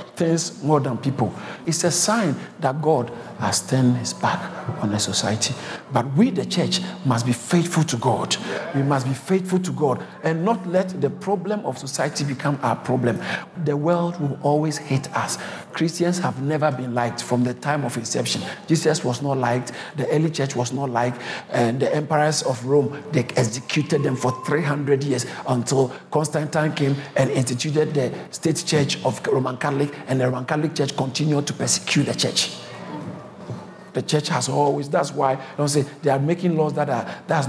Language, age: English, 50-69